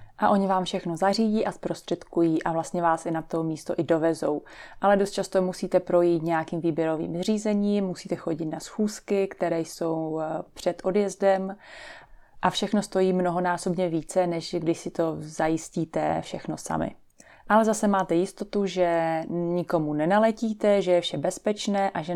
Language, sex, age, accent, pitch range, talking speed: Czech, female, 30-49, native, 165-200 Hz, 155 wpm